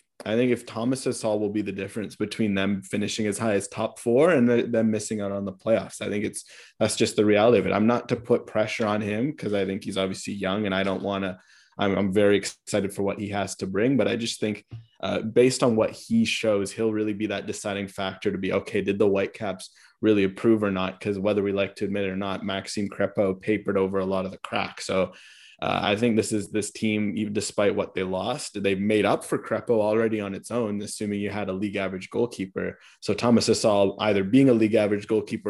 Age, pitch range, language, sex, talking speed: 20-39, 95-110 Hz, English, male, 240 wpm